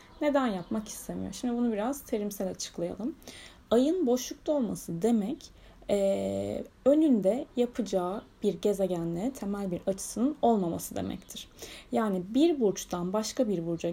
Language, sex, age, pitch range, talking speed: Turkish, female, 10-29, 195-265 Hz, 120 wpm